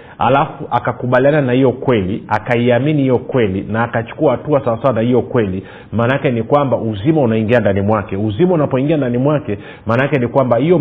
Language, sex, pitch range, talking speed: Swahili, male, 105-140 Hz, 165 wpm